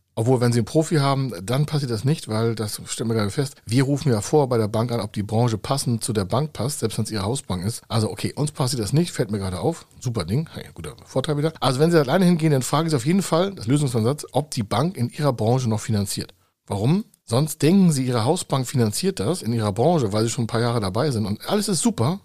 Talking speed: 265 wpm